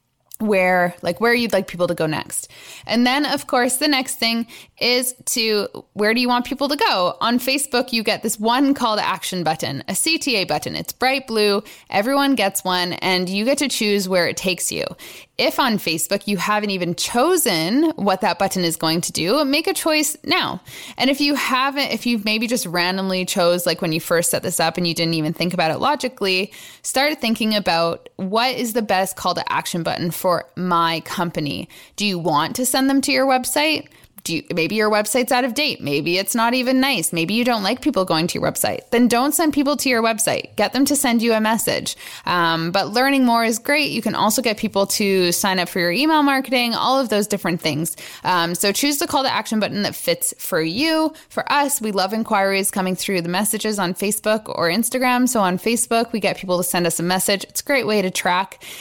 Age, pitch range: 20-39, 180-255 Hz